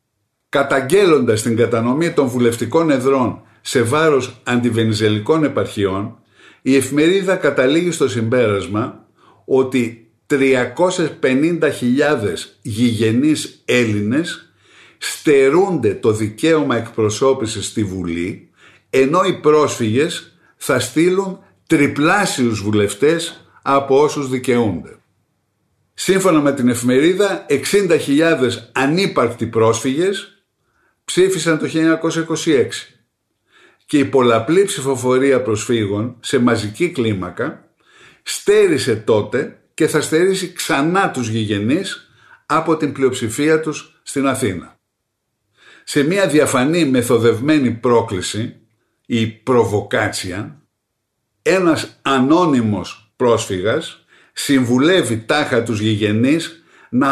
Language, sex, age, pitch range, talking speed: Greek, male, 50-69, 115-160 Hz, 85 wpm